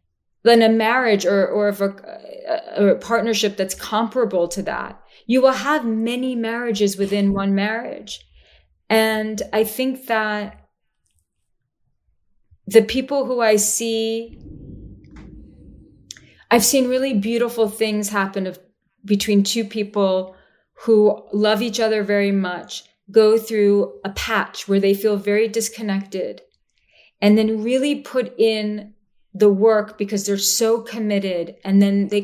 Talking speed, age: 130 wpm, 30-49